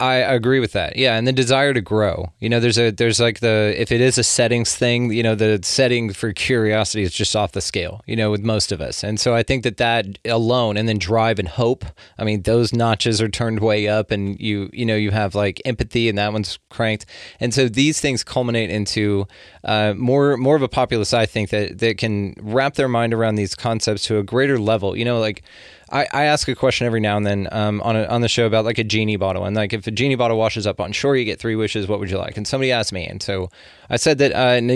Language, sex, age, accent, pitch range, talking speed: English, male, 20-39, American, 105-120 Hz, 255 wpm